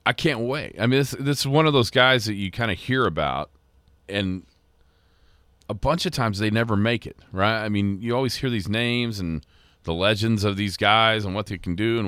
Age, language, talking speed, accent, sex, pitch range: 40-59, English, 235 wpm, American, male, 80-105 Hz